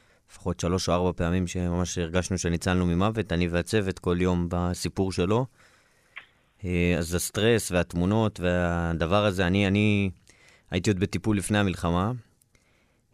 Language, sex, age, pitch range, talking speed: Hebrew, male, 20-39, 90-105 Hz, 115 wpm